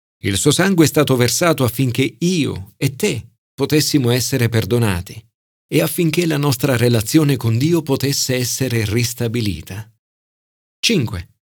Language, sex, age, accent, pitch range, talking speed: Italian, male, 40-59, native, 105-150 Hz, 125 wpm